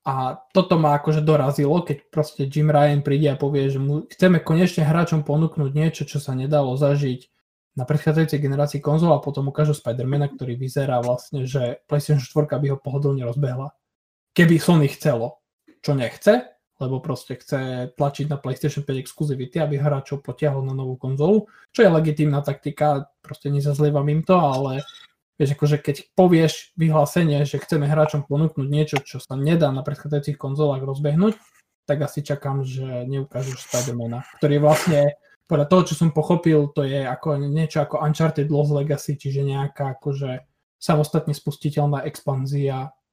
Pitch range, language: 135-155 Hz, Slovak